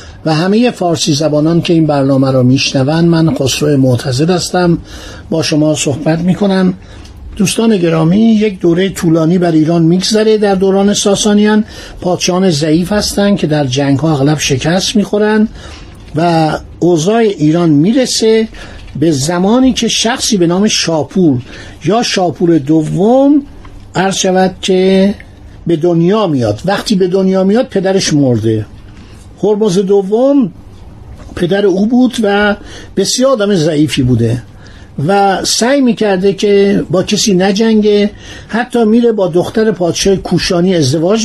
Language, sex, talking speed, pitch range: Persian, male, 125 wpm, 155-205 Hz